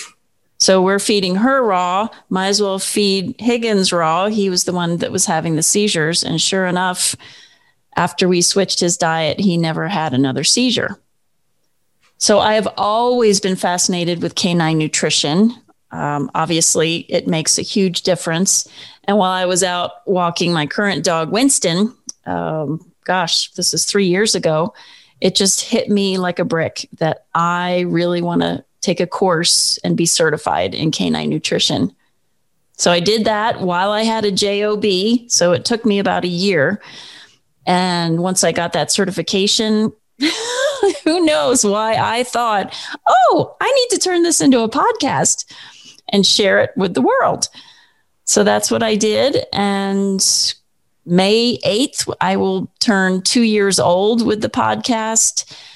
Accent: American